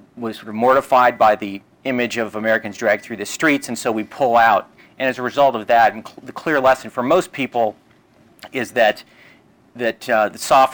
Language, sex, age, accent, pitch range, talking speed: English, male, 40-59, American, 110-125 Hz, 210 wpm